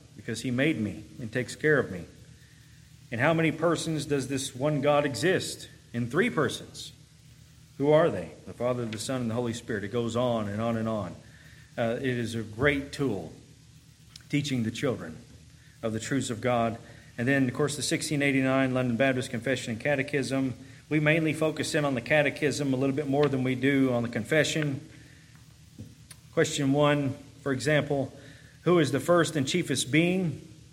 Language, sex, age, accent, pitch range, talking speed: English, male, 40-59, American, 125-145 Hz, 180 wpm